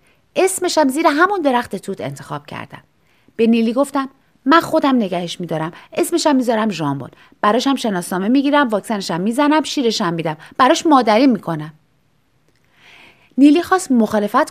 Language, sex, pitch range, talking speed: Persian, female, 160-250 Hz, 150 wpm